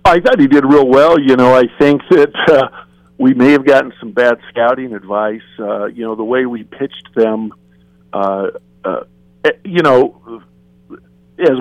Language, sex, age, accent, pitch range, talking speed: English, male, 50-69, American, 100-130 Hz, 170 wpm